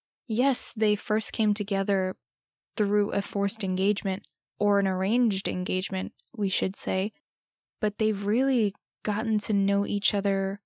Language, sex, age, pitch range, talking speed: English, female, 10-29, 200-230 Hz, 135 wpm